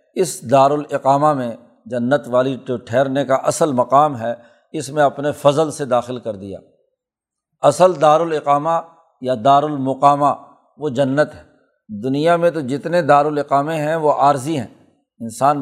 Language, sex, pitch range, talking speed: Urdu, male, 135-160 Hz, 145 wpm